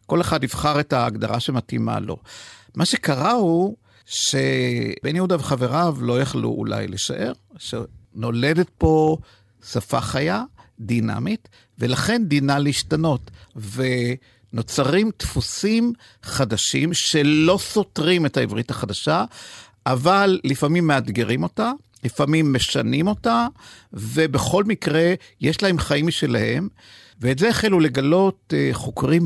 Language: Hebrew